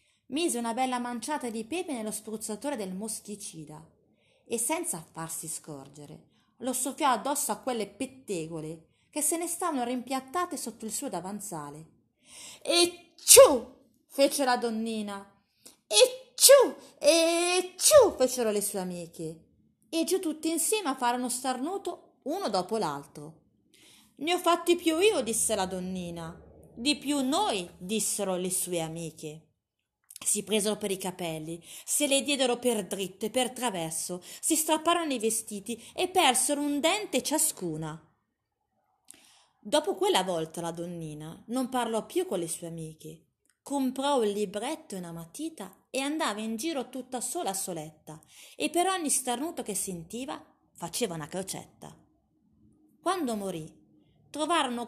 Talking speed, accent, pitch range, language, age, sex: 140 wpm, native, 180-300 Hz, Italian, 30-49, female